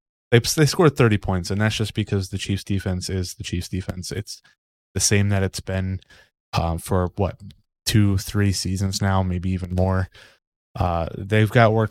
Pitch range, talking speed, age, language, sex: 95-105 Hz, 180 wpm, 20-39, English, male